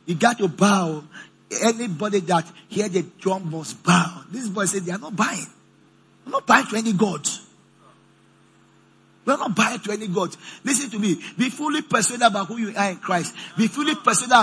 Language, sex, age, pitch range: English, male, 50-69, 170-250 Hz